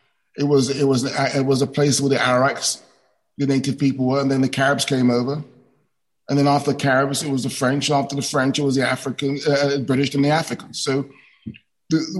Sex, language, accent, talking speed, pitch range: male, English, British, 220 wpm, 130-145 Hz